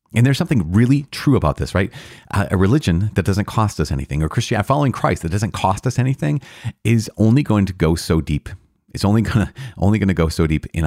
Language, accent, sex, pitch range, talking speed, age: English, American, male, 75-105 Hz, 240 wpm, 30-49